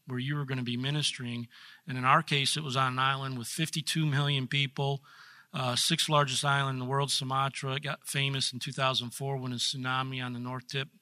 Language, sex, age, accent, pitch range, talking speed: English, male, 40-59, American, 130-145 Hz, 220 wpm